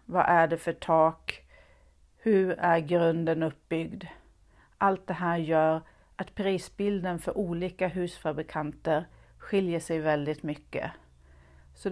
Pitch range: 155-185 Hz